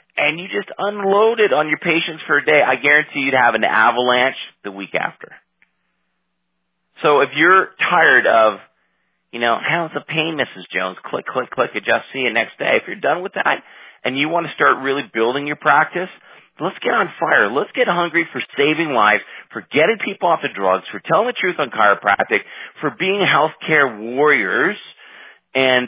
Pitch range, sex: 125-175 Hz, male